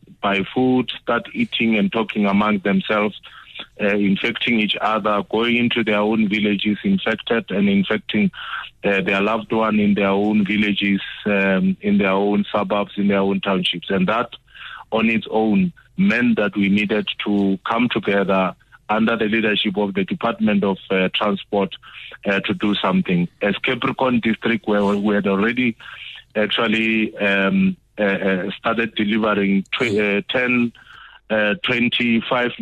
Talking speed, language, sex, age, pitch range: 145 wpm, English, male, 30-49, 100-110 Hz